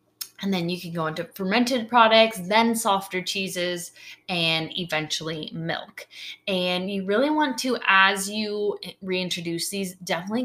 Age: 20-39